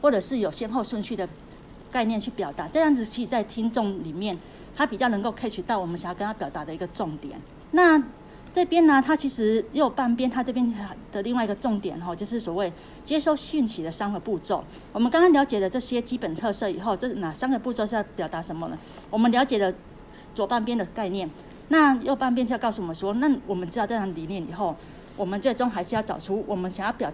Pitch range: 190-245 Hz